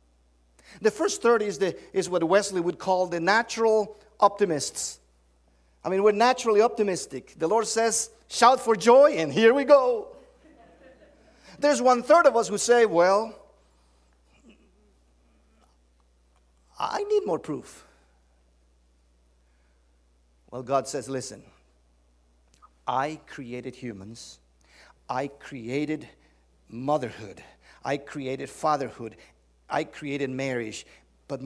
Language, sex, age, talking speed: English, male, 50-69, 105 wpm